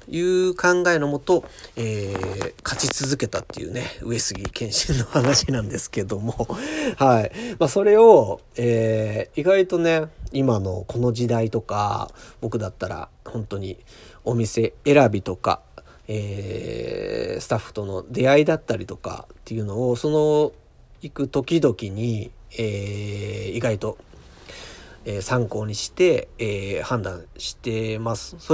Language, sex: Japanese, male